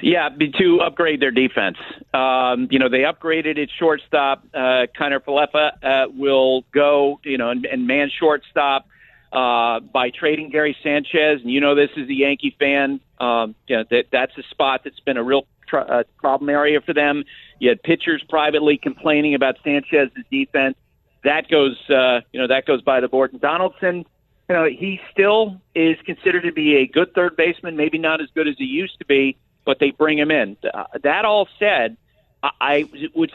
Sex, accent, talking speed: male, American, 190 wpm